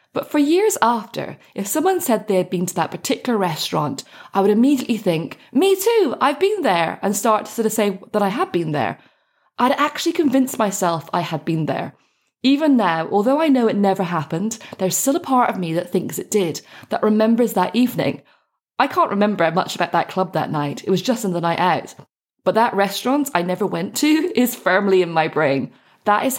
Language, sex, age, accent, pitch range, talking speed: English, female, 20-39, British, 165-245 Hz, 215 wpm